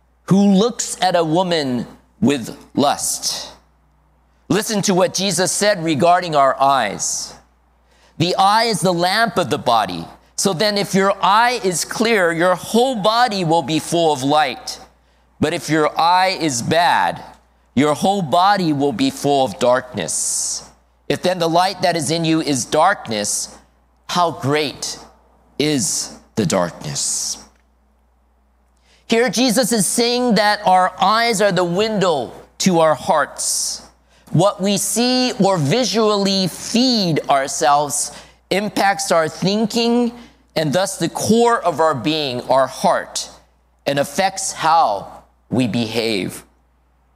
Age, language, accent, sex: 50-69, Japanese, American, male